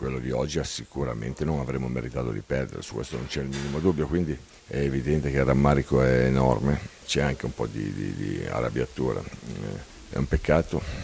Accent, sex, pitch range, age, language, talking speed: native, male, 65-75 Hz, 50-69, Italian, 190 wpm